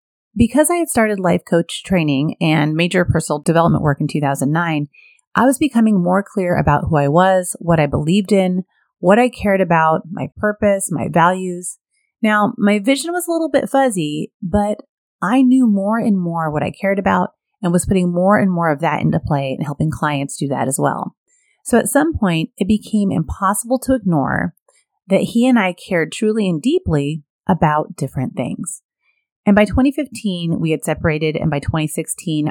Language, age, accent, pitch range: English, 30-49, American, 155-225 Hz